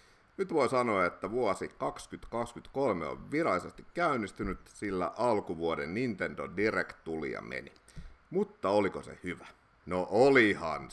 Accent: native